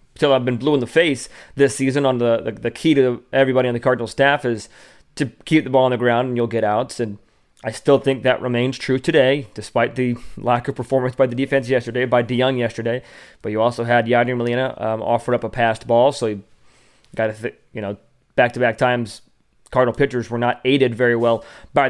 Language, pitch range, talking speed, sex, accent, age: English, 115-130 Hz, 230 wpm, male, American, 20-39